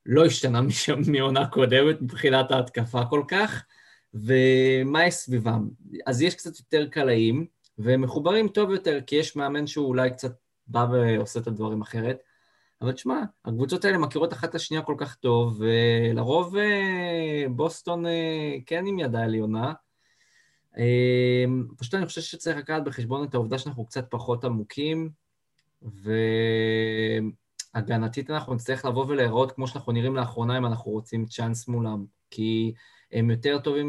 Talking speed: 140 wpm